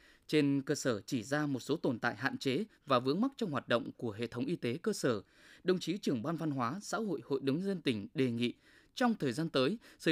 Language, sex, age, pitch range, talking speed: Vietnamese, male, 20-39, 130-220 Hz, 255 wpm